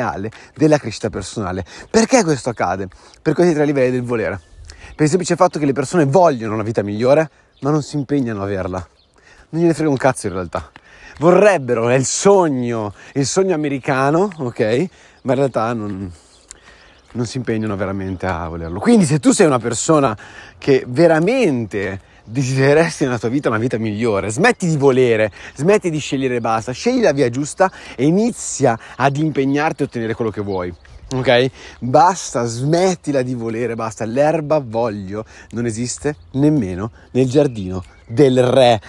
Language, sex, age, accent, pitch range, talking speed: Italian, male, 30-49, native, 105-150 Hz, 160 wpm